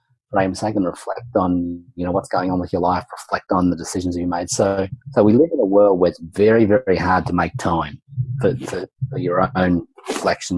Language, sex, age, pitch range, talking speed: English, male, 30-49, 90-115 Hz, 225 wpm